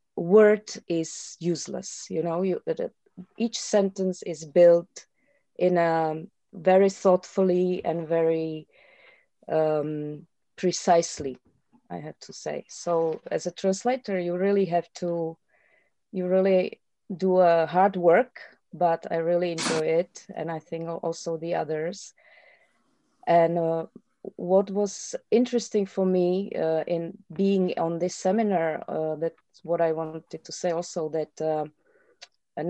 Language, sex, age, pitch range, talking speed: Slovak, female, 30-49, 160-190 Hz, 130 wpm